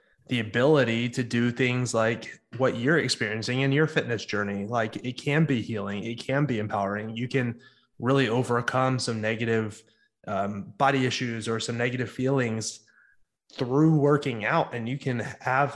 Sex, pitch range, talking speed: male, 110-135 Hz, 160 wpm